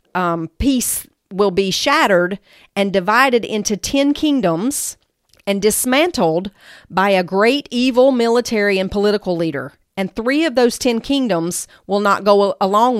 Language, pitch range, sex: English, 190-240 Hz, female